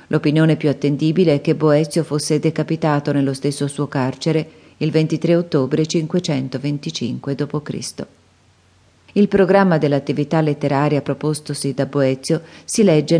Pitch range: 145-180 Hz